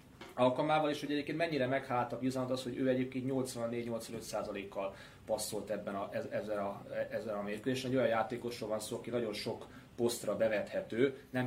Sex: male